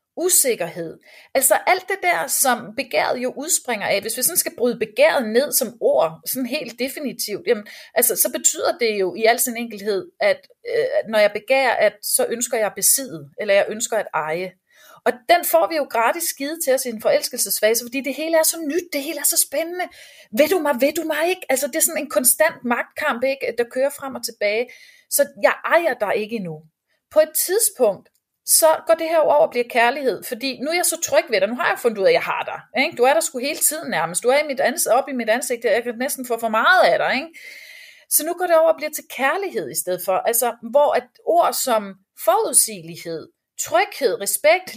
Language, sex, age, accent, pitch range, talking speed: Danish, female, 30-49, native, 230-325 Hz, 220 wpm